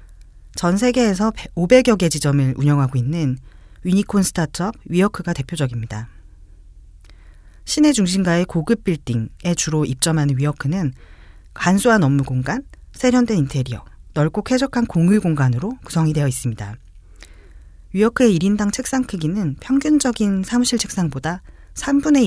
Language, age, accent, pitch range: Korean, 40-59, native, 125-200 Hz